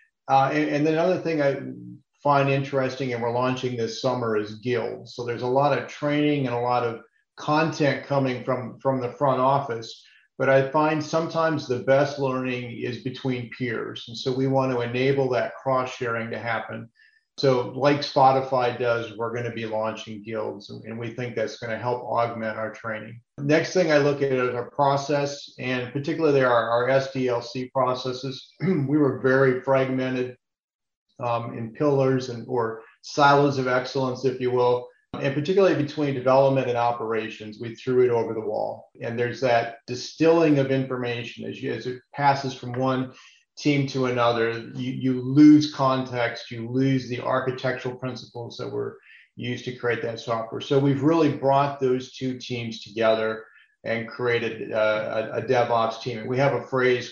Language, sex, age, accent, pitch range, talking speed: English, male, 40-59, American, 115-140 Hz, 170 wpm